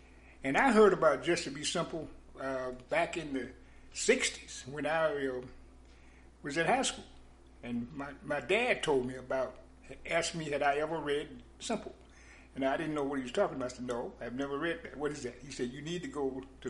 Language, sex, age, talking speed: English, male, 60-79, 210 wpm